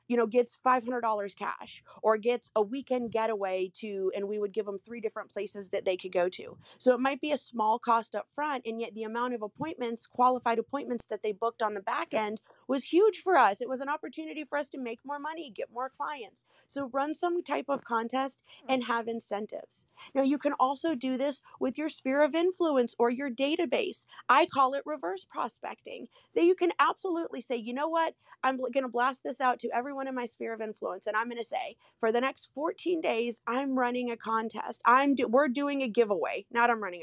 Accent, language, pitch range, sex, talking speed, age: American, English, 225-280 Hz, female, 220 wpm, 30-49